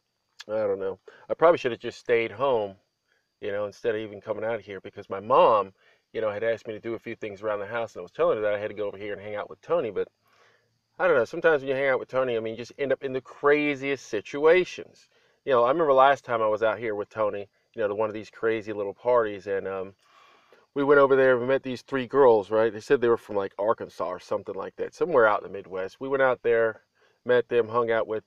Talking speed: 280 wpm